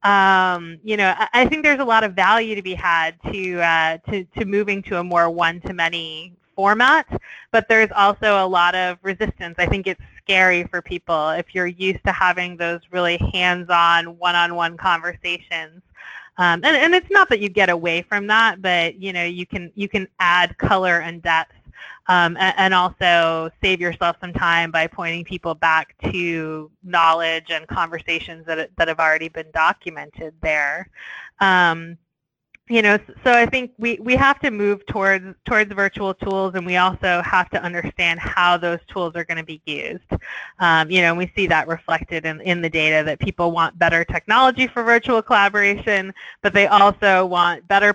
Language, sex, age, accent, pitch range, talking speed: English, female, 20-39, American, 170-200 Hz, 180 wpm